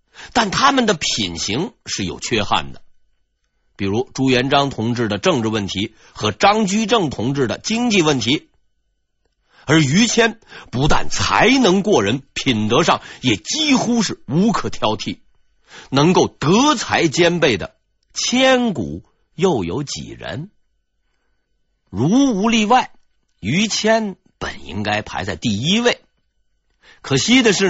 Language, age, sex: Chinese, 50-69, male